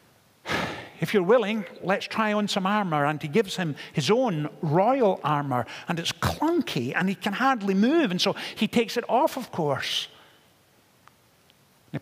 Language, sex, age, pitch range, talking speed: English, male, 50-69, 140-200 Hz, 165 wpm